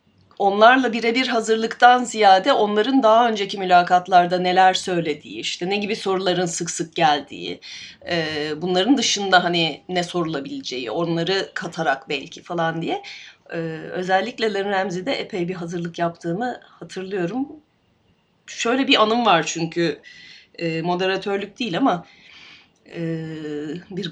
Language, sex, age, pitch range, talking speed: Turkish, female, 30-49, 170-250 Hz, 115 wpm